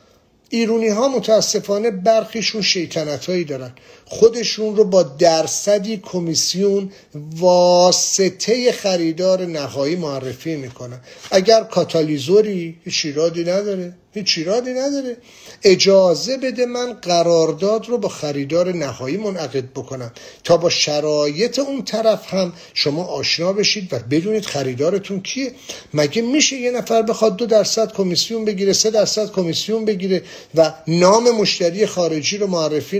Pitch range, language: 165-230 Hz, English